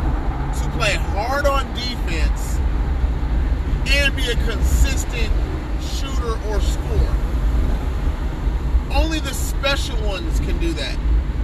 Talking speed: 95 wpm